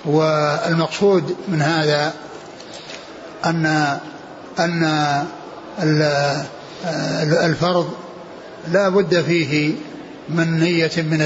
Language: Arabic